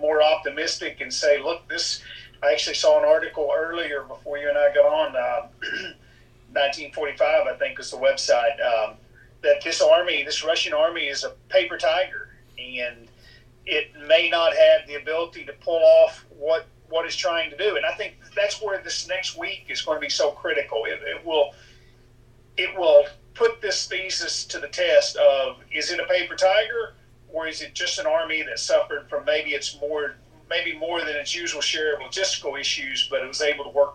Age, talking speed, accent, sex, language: 40-59, 195 wpm, American, male, English